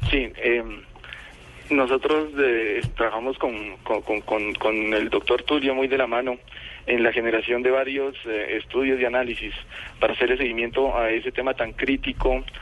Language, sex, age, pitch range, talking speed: Spanish, male, 40-59, 115-135 Hz, 155 wpm